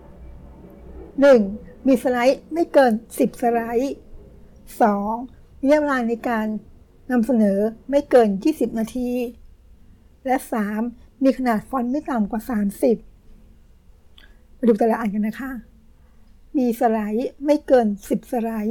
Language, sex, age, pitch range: Thai, female, 60-79, 225-270 Hz